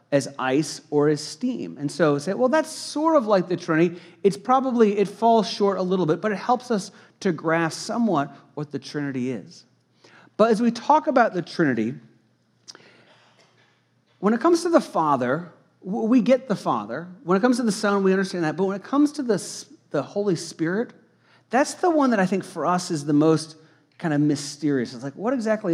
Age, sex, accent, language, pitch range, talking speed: 40-59, male, American, English, 160-215 Hz, 205 wpm